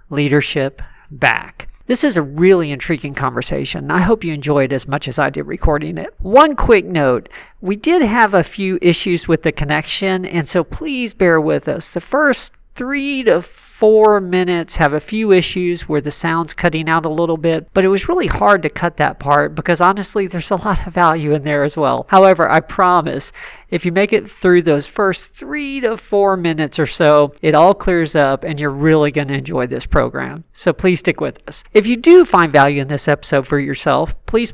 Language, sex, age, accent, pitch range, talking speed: English, male, 40-59, American, 145-190 Hz, 210 wpm